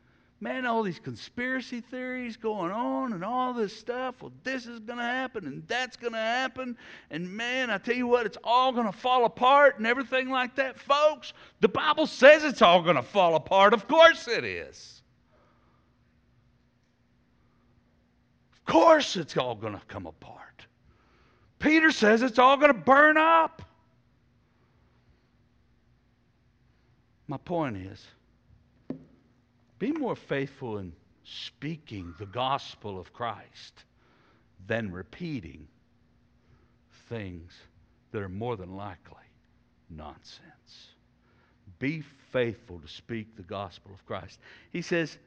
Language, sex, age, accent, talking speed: English, male, 60-79, American, 130 wpm